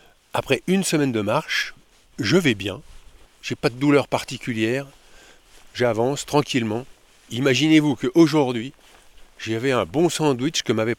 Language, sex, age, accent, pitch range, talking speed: French, male, 50-69, French, 110-140 Hz, 125 wpm